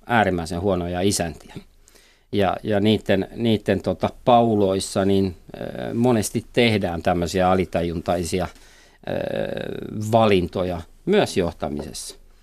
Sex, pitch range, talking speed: male, 85-115 Hz, 70 wpm